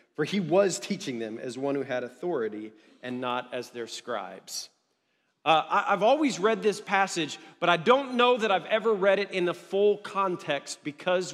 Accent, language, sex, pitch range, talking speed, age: American, English, male, 185-250 Hz, 185 wpm, 40-59